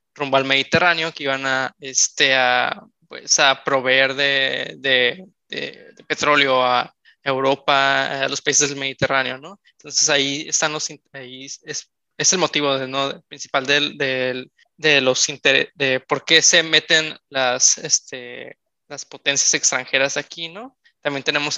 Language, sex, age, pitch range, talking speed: Spanish, male, 20-39, 135-155 Hz, 155 wpm